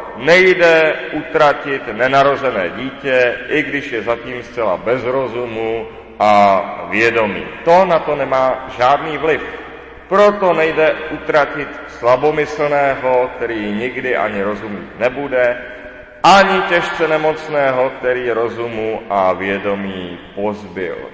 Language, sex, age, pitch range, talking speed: Czech, male, 40-59, 110-150 Hz, 100 wpm